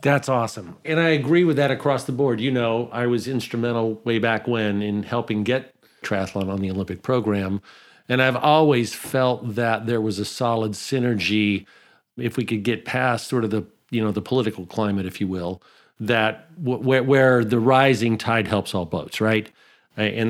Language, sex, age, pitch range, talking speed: English, male, 50-69, 110-135 Hz, 190 wpm